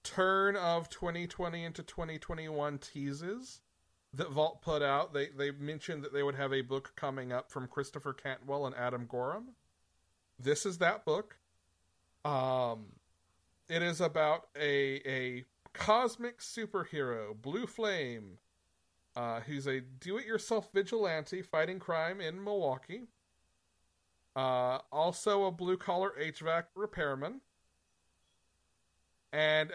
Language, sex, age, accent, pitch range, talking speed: English, male, 40-59, American, 115-180 Hz, 125 wpm